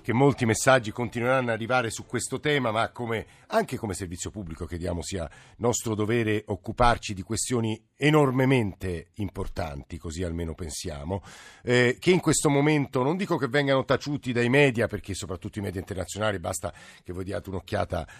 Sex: male